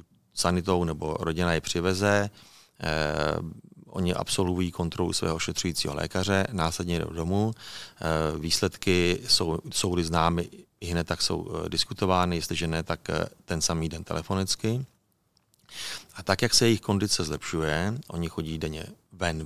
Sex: male